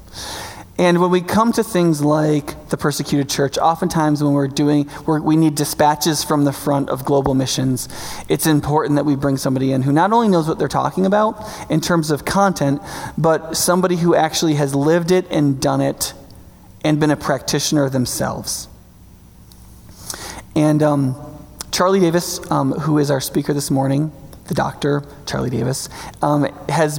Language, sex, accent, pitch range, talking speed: English, male, American, 140-160 Hz, 165 wpm